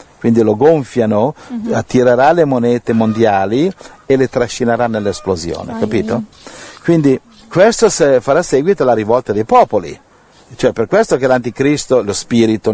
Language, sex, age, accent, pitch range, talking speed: Italian, male, 50-69, native, 105-125 Hz, 125 wpm